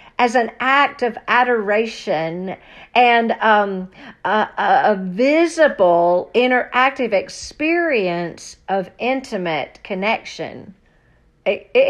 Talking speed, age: 80 wpm, 50-69